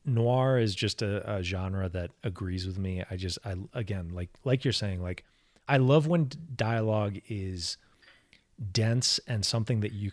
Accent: American